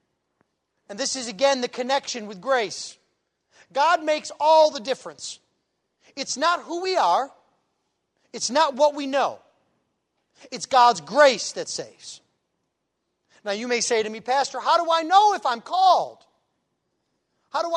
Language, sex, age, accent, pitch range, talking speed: English, male, 40-59, American, 270-335 Hz, 150 wpm